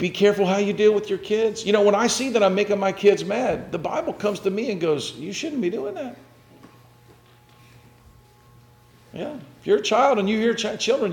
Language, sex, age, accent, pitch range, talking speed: English, male, 50-69, American, 125-170 Hz, 225 wpm